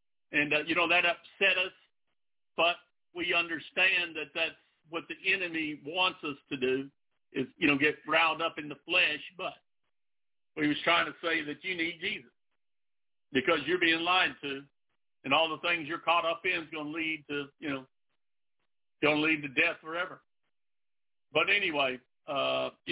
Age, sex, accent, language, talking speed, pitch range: 60-79, male, American, English, 180 wpm, 155-205 Hz